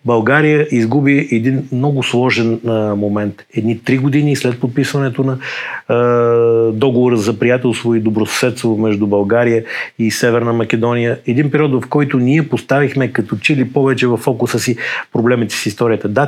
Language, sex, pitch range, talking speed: Bulgarian, male, 110-130 Hz, 145 wpm